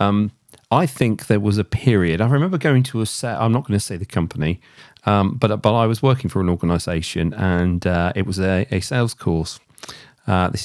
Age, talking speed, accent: 40-59, 220 wpm, British